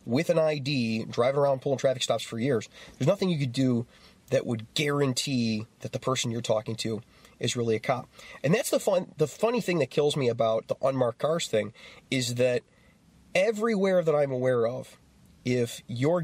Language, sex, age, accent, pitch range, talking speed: English, male, 30-49, American, 120-175 Hz, 190 wpm